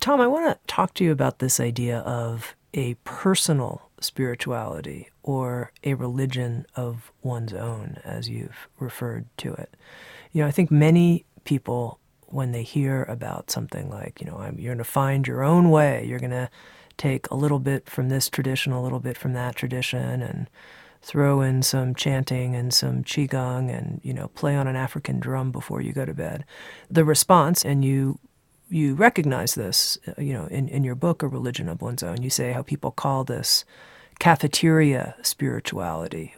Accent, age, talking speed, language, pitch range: American, 40-59, 180 wpm, English, 125-175 Hz